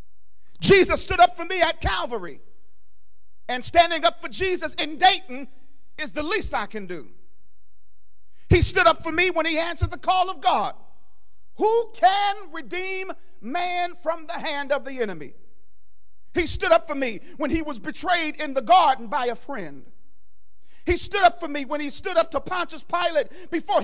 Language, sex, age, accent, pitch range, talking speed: English, male, 50-69, American, 240-360 Hz, 175 wpm